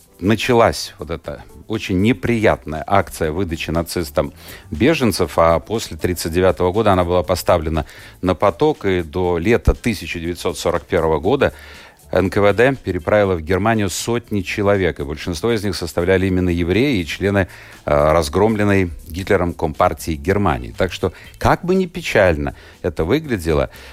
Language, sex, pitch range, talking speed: Russian, male, 85-105 Hz, 130 wpm